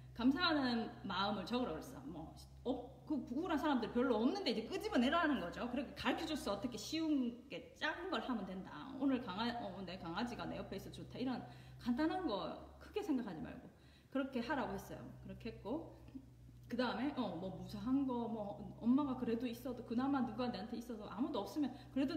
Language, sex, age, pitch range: Korean, female, 30-49, 205-275 Hz